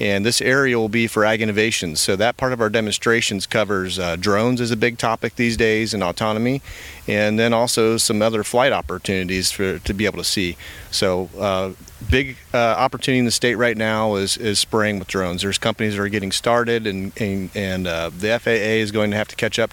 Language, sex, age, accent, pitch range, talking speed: English, male, 40-59, American, 95-115 Hz, 220 wpm